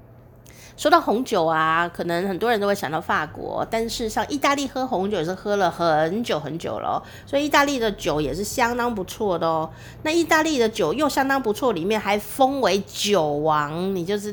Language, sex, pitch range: Chinese, female, 160-220 Hz